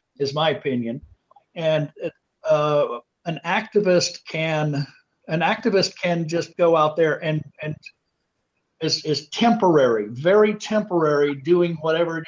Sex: male